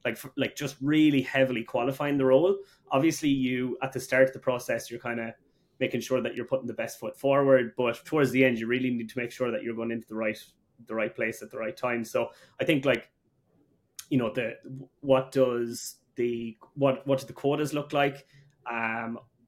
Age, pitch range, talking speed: 20-39, 120-140 Hz, 215 wpm